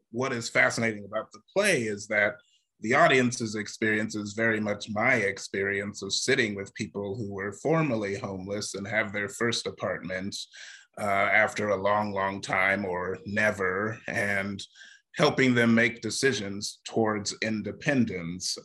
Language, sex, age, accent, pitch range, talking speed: English, male, 30-49, American, 105-120 Hz, 140 wpm